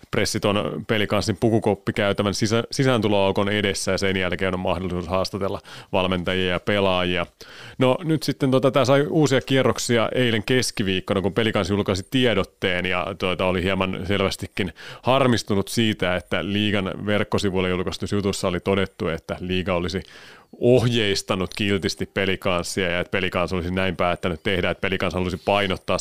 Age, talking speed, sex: 30-49, 135 wpm, male